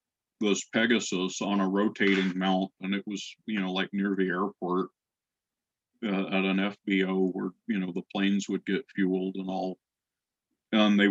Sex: male